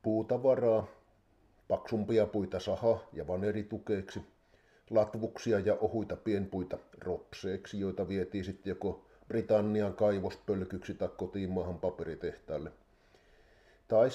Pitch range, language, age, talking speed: 95-115 Hz, Finnish, 50-69, 90 wpm